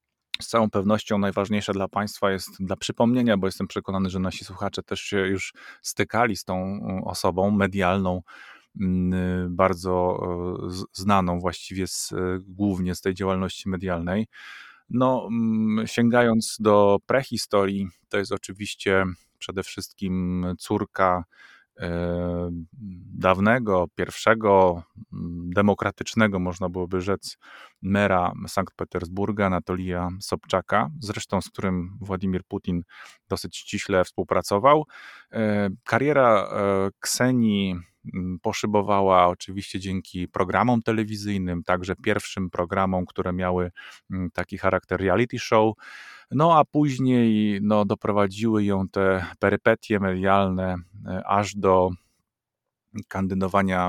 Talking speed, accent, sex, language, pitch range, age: 100 wpm, native, male, Polish, 90-105 Hz, 30-49